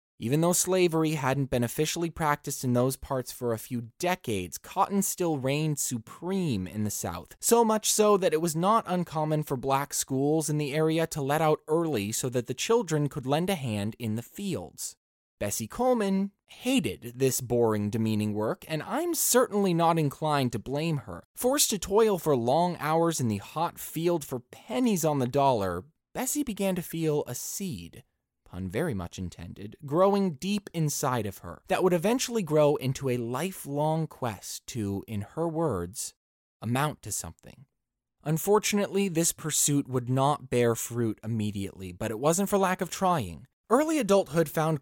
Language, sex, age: English, male, 20-39